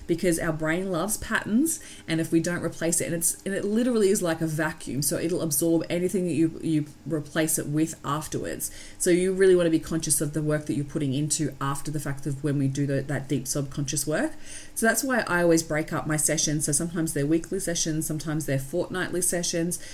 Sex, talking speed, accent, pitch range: female, 225 wpm, Australian, 145-175 Hz